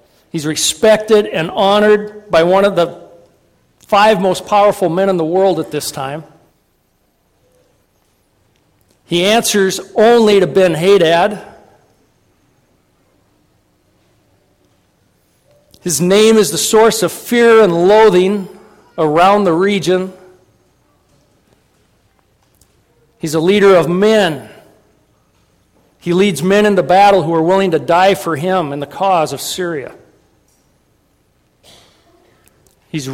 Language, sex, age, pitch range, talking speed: English, male, 50-69, 155-195 Hz, 105 wpm